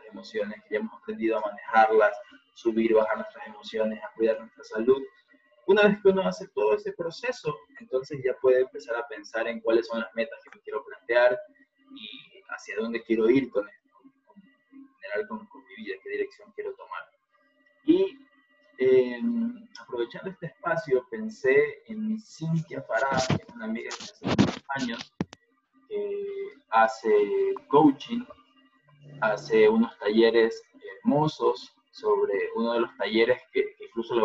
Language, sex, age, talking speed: Spanish, male, 20-39, 150 wpm